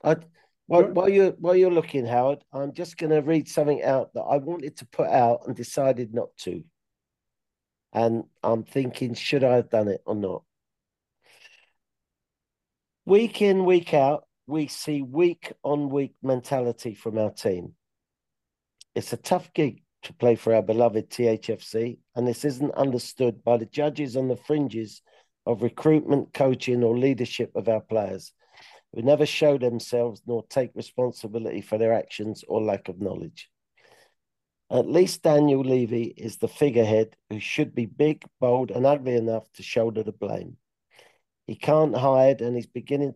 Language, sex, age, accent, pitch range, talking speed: English, male, 50-69, British, 115-145 Hz, 155 wpm